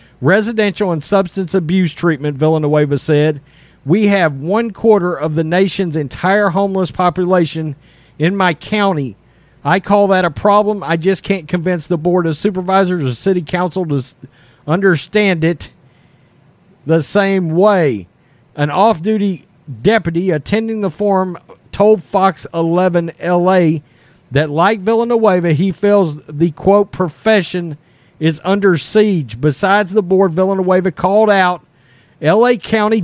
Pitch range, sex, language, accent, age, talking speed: 160-205 Hz, male, English, American, 40-59, 130 wpm